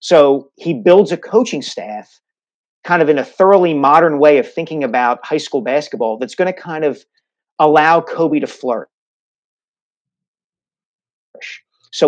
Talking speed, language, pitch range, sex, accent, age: 145 wpm, English, 135-175 Hz, male, American, 40-59